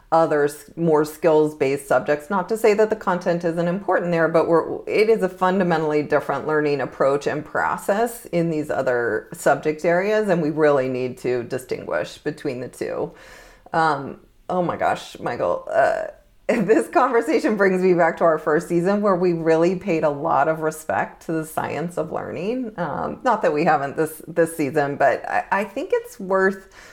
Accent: American